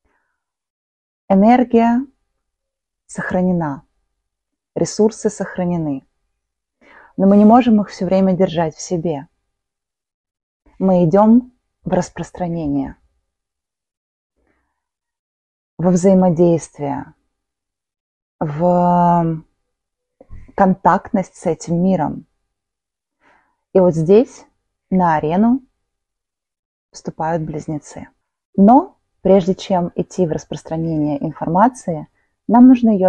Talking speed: 75 wpm